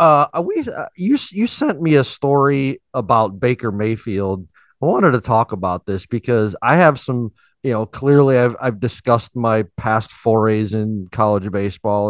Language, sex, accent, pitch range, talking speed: English, male, American, 105-135 Hz, 170 wpm